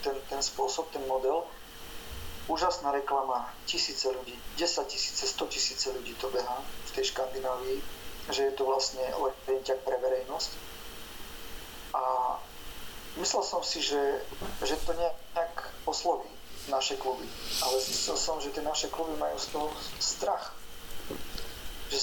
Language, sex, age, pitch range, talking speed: Slovak, male, 40-59, 130-175 Hz, 140 wpm